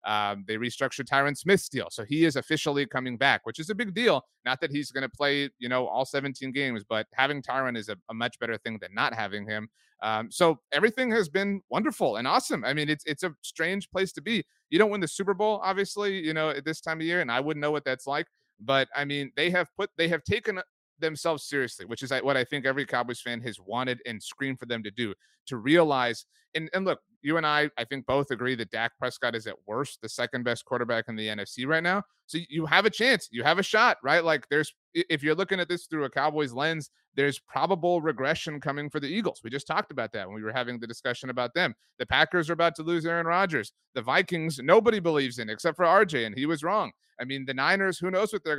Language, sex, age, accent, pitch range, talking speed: English, male, 30-49, American, 130-175 Hz, 250 wpm